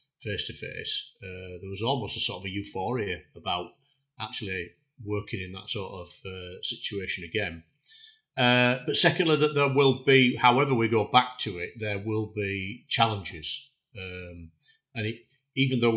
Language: English